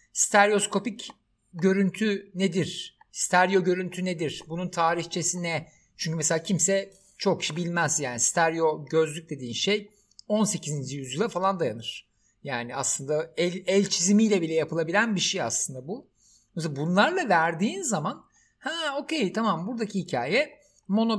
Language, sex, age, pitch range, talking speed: Turkish, male, 60-79, 150-205 Hz, 125 wpm